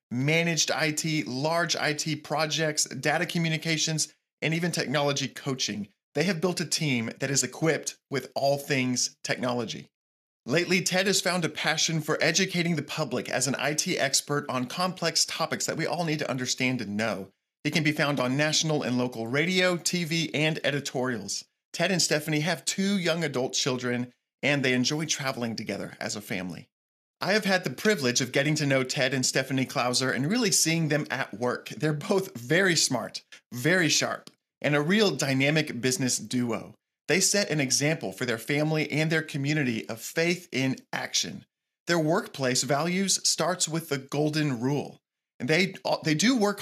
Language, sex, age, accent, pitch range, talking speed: English, male, 40-59, American, 130-165 Hz, 170 wpm